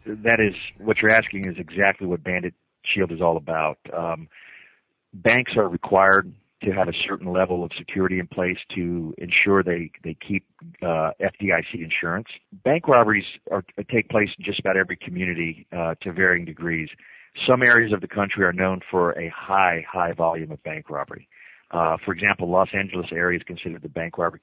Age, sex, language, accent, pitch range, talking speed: 40-59, male, English, American, 85-100 Hz, 180 wpm